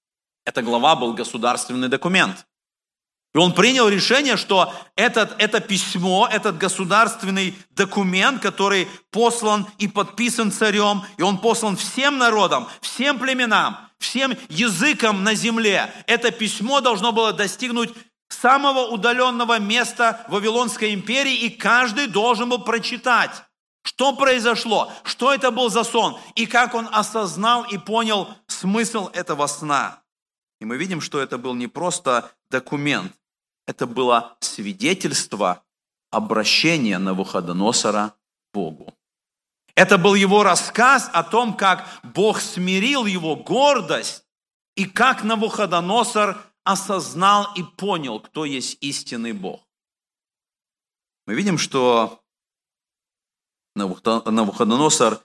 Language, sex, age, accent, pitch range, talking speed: Russian, male, 50-69, native, 165-235 Hz, 110 wpm